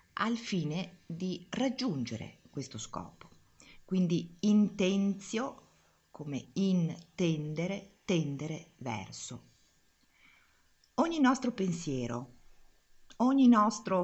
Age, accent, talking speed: 50-69, native, 75 wpm